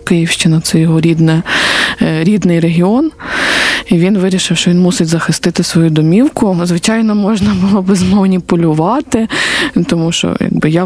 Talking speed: 120 wpm